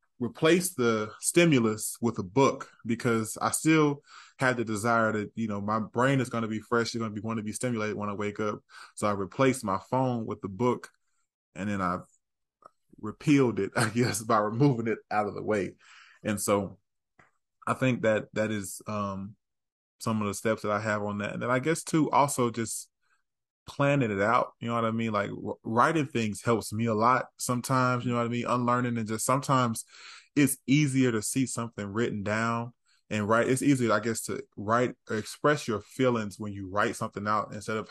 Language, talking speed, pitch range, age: English, 205 wpm, 105-125 Hz, 20-39